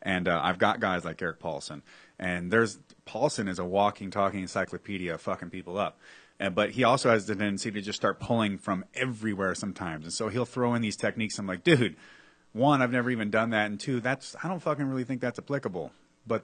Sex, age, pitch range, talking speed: male, 30-49, 95-115 Hz, 225 wpm